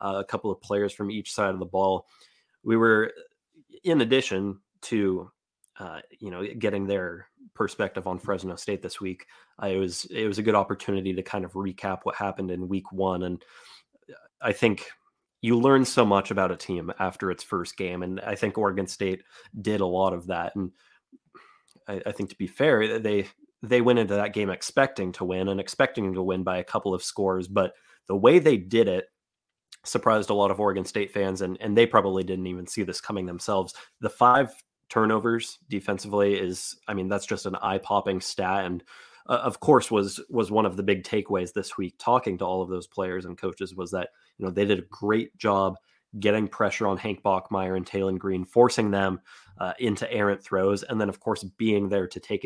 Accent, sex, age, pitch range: American, male, 20-39, 95-105 Hz